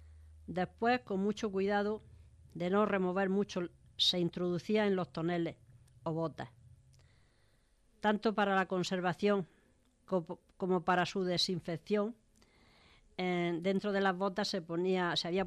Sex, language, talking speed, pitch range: female, Spanish, 120 wpm, 135-200 Hz